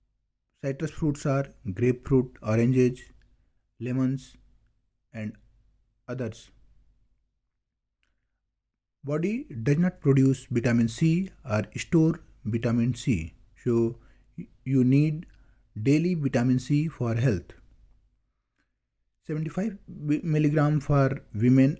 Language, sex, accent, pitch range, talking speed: Hindi, male, native, 110-135 Hz, 85 wpm